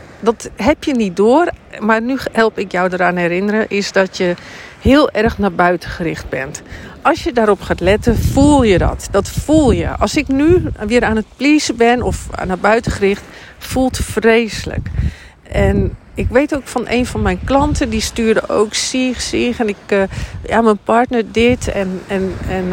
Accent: Dutch